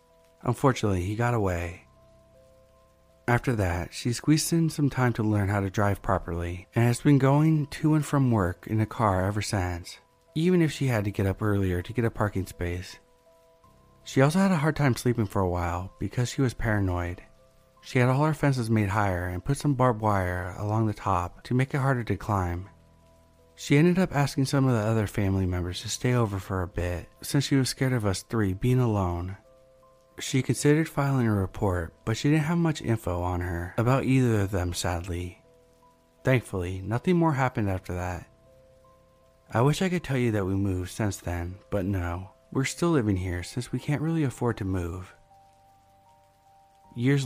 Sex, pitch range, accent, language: male, 95-130 Hz, American, English